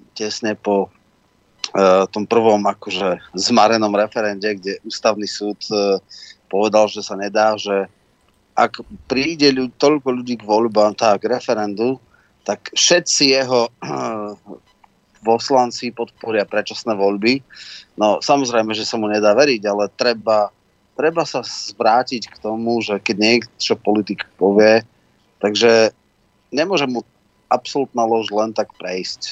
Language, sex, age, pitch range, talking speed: Slovak, male, 30-49, 105-120 Hz, 125 wpm